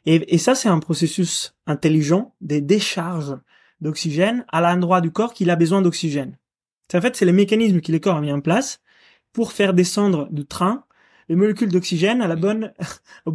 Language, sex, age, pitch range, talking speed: French, male, 20-39, 155-195 Hz, 195 wpm